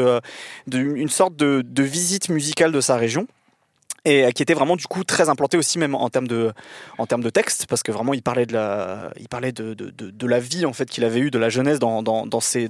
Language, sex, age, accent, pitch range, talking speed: French, male, 20-39, French, 120-150 Hz, 260 wpm